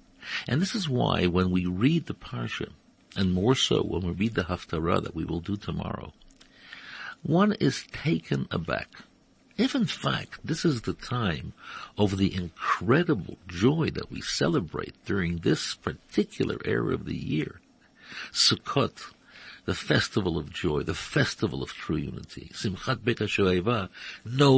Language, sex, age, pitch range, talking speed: English, male, 60-79, 90-130 Hz, 145 wpm